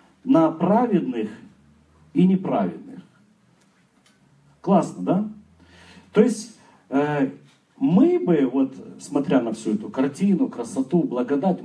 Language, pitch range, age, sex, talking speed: Russian, 145-215 Hz, 40-59, male, 95 wpm